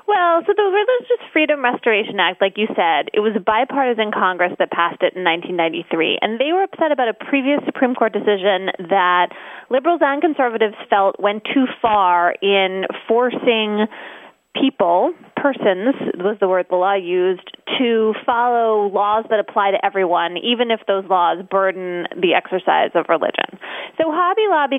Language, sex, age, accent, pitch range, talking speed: English, female, 20-39, American, 195-275 Hz, 160 wpm